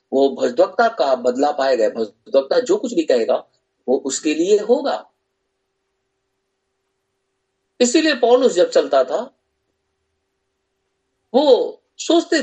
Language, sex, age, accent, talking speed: Hindi, male, 50-69, native, 100 wpm